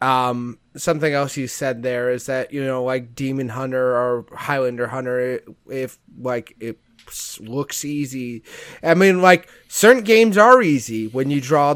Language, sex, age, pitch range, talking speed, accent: English, male, 30-49, 130-160 Hz, 165 wpm, American